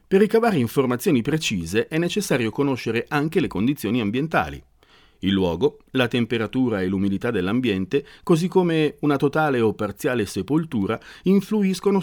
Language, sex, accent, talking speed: Italian, male, native, 130 wpm